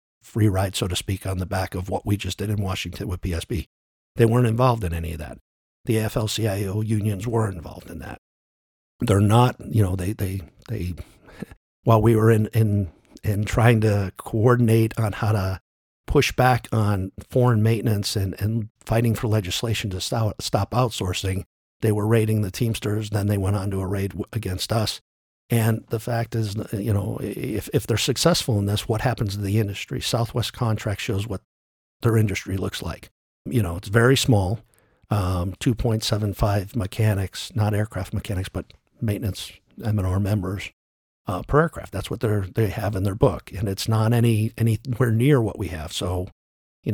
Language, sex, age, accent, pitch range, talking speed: English, male, 50-69, American, 95-115 Hz, 180 wpm